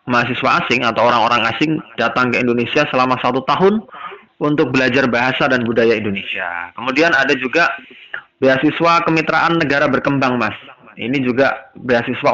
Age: 20-39